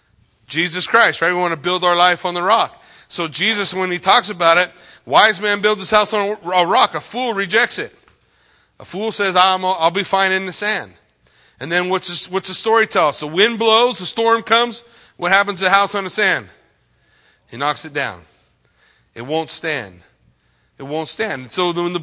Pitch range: 165-225 Hz